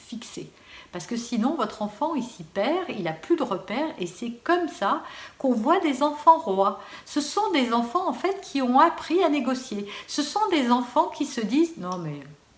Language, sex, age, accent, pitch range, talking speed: French, female, 50-69, French, 200-295 Hz, 205 wpm